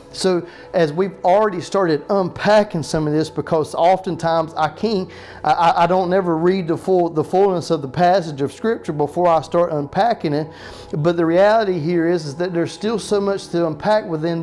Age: 40-59